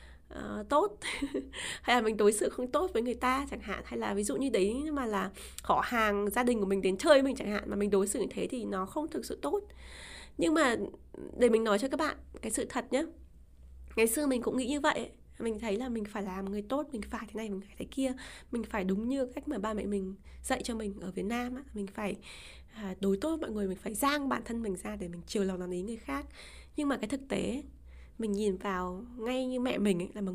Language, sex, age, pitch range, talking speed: Vietnamese, female, 20-39, 195-255 Hz, 260 wpm